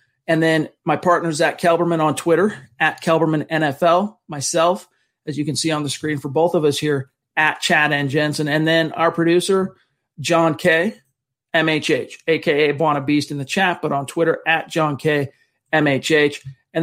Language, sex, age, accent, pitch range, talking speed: English, male, 40-59, American, 145-170 Hz, 170 wpm